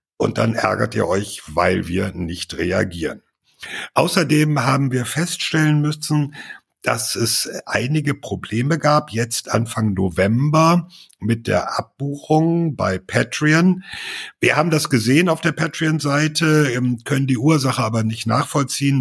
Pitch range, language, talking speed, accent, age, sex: 110-155 Hz, German, 125 wpm, German, 60-79, male